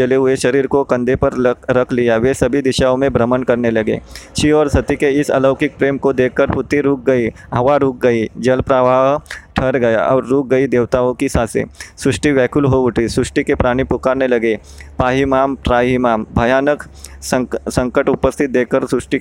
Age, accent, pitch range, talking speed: 20-39, native, 125-145 Hz, 95 wpm